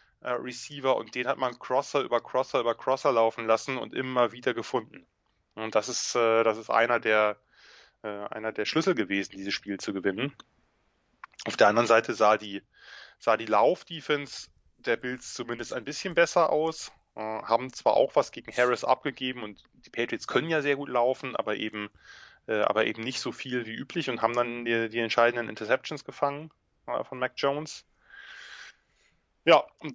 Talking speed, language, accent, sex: 170 wpm, German, German, male